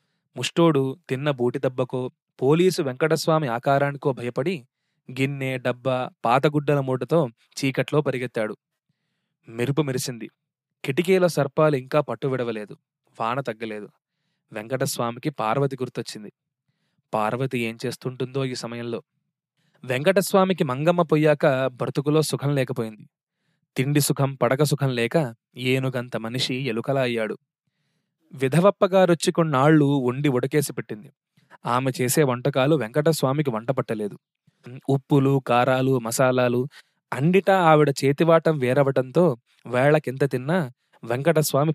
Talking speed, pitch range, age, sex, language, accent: 95 wpm, 125-160 Hz, 20-39, male, Telugu, native